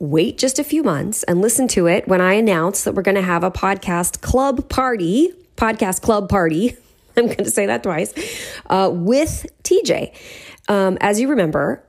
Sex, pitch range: female, 175-235 Hz